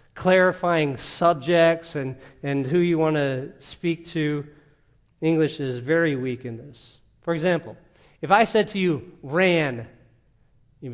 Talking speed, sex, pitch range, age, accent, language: 135 wpm, male, 140-205 Hz, 40-59, American, English